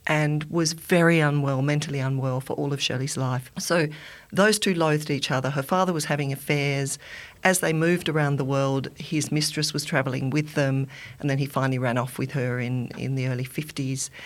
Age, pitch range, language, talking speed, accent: 50-69, 135-165 Hz, English, 200 wpm, Australian